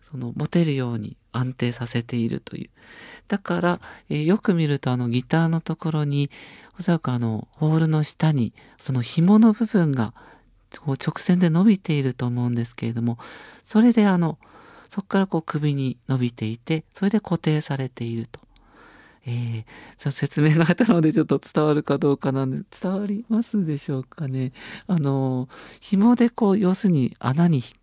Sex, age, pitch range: male, 50-69, 125-175 Hz